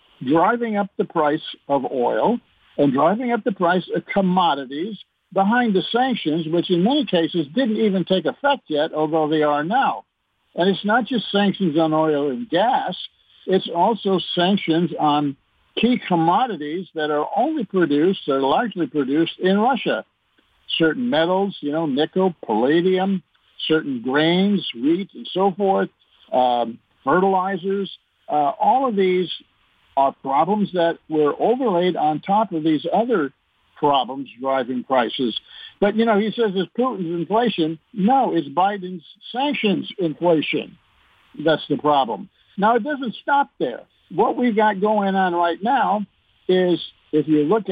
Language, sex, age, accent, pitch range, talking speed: English, male, 60-79, American, 155-210 Hz, 145 wpm